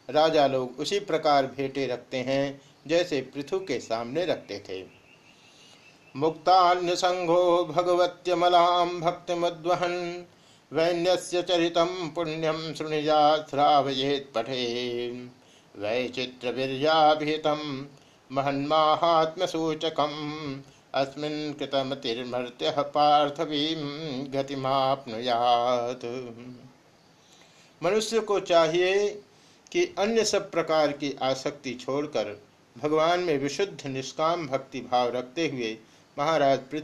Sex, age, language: male, 60-79, Hindi